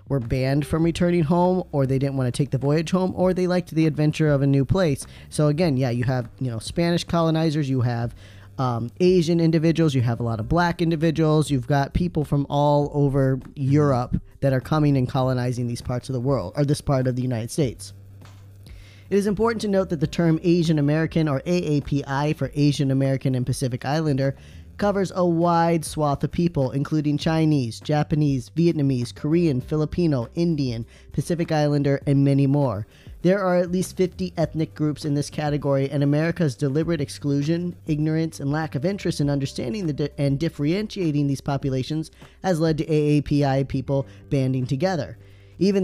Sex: male